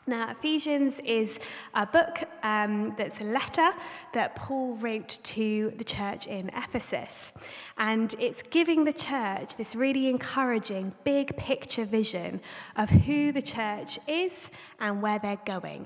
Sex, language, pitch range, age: female, English, 210-270 Hz, 20-39